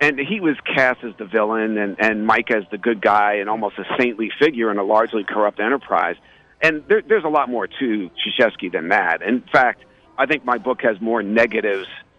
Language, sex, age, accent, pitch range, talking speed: English, male, 50-69, American, 110-135 Hz, 205 wpm